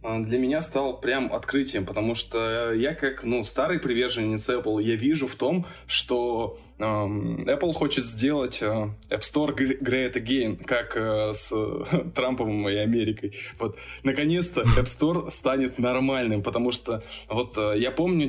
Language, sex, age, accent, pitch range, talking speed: Russian, male, 20-39, native, 105-135 Hz, 150 wpm